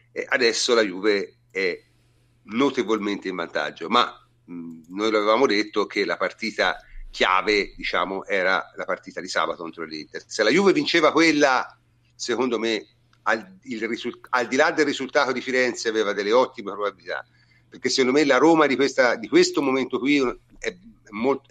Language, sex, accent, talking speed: Italian, male, native, 150 wpm